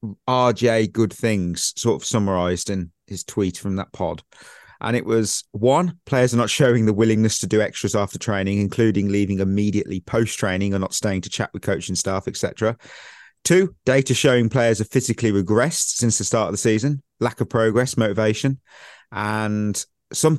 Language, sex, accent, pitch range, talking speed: English, male, British, 105-130 Hz, 175 wpm